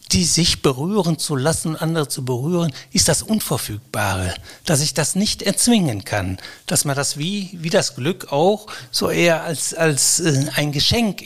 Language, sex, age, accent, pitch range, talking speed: German, male, 60-79, German, 130-175 Hz, 165 wpm